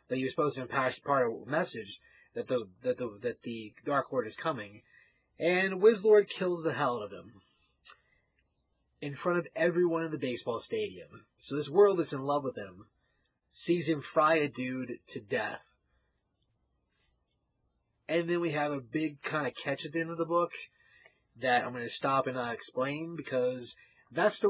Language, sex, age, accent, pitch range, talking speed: English, male, 30-49, American, 130-175 Hz, 180 wpm